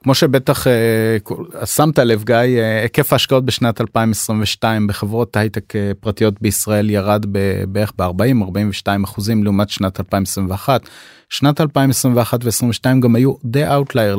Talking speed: 120 wpm